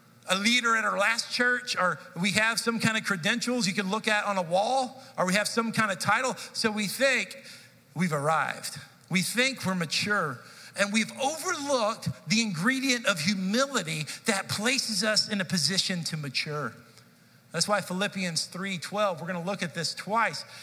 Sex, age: male, 50-69